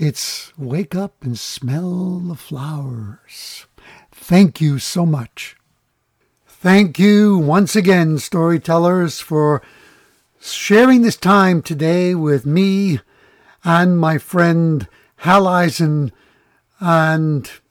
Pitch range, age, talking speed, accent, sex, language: 155-205 Hz, 60-79, 100 wpm, American, male, English